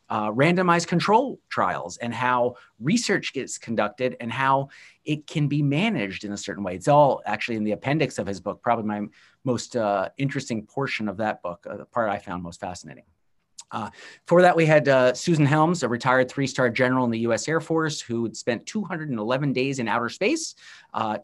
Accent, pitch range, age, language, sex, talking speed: American, 105-140 Hz, 30-49, English, male, 200 wpm